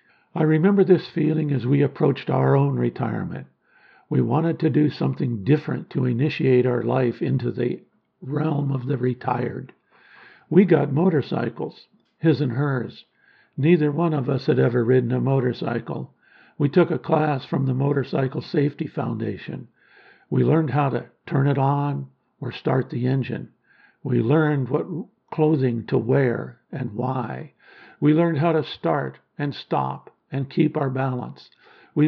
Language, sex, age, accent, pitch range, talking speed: English, male, 60-79, American, 130-155 Hz, 150 wpm